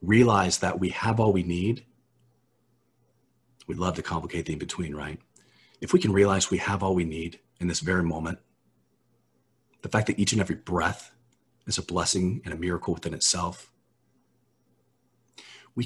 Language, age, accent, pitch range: English, 40-59, American, 90-120 Hz